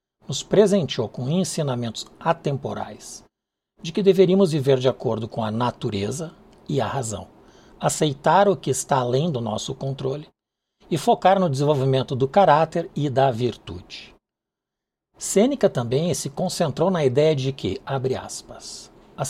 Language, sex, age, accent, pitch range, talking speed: Portuguese, male, 60-79, Brazilian, 125-170 Hz, 140 wpm